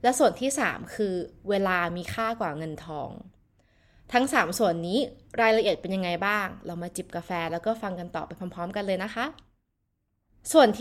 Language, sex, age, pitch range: Thai, female, 20-39, 200-270 Hz